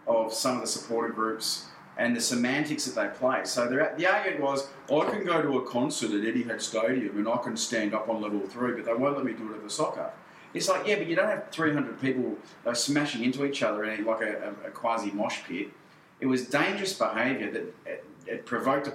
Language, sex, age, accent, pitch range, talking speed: English, male, 30-49, Australian, 110-135 Hz, 225 wpm